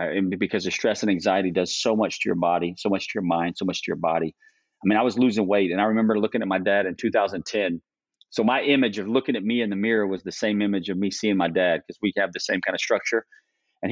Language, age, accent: English, 40-59, American